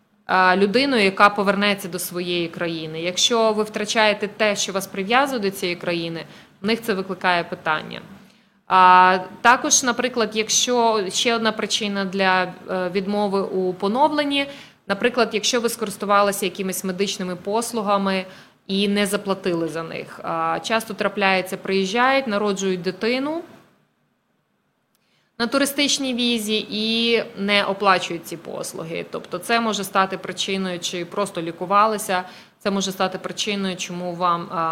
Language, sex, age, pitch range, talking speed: English, female, 20-39, 185-215 Hz, 125 wpm